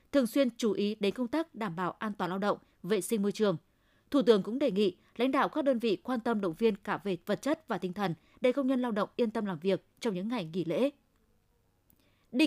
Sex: female